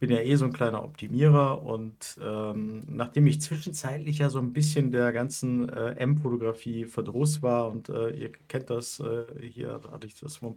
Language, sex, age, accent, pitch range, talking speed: German, male, 50-69, German, 115-145 Hz, 195 wpm